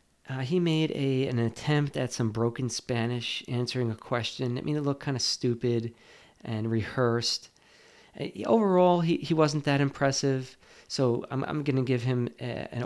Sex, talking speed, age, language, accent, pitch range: male, 175 wpm, 40-59, English, American, 120-155 Hz